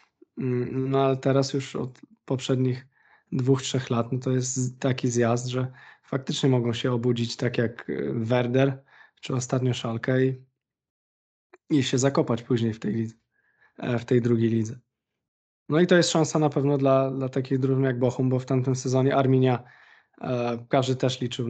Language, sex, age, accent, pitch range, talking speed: Polish, male, 20-39, native, 125-140 Hz, 160 wpm